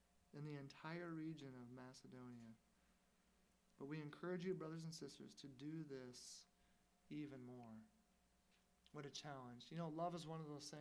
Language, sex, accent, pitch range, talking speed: English, male, American, 140-175 Hz, 155 wpm